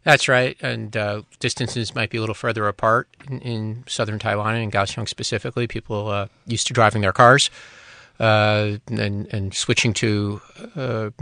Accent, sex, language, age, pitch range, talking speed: American, male, English, 40-59, 105-120 Hz, 165 wpm